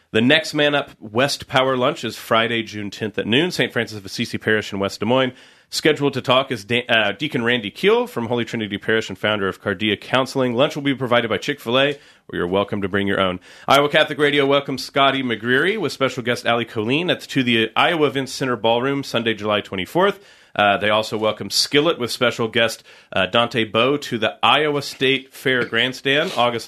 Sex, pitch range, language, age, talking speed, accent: male, 110-135 Hz, English, 40-59, 210 wpm, American